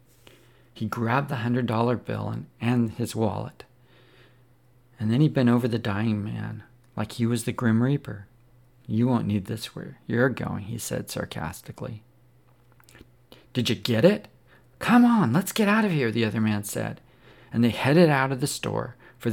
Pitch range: 110-125 Hz